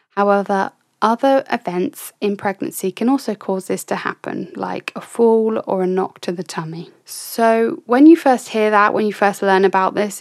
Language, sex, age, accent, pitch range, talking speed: English, female, 20-39, British, 185-225 Hz, 190 wpm